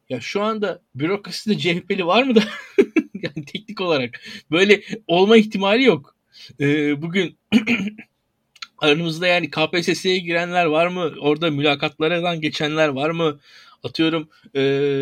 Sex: male